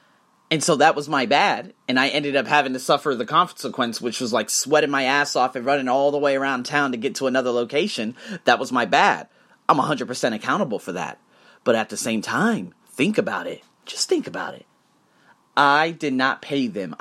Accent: American